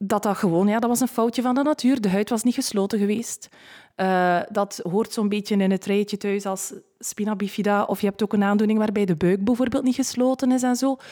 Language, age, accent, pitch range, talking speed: Dutch, 20-39, Belgian, 185-225 Hz, 240 wpm